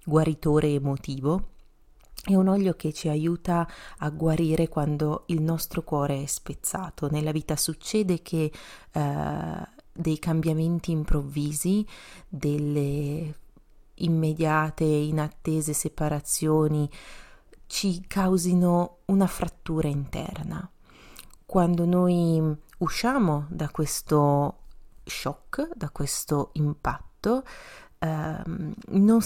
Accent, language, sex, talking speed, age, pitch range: native, Italian, female, 90 wpm, 30-49, 150-180 Hz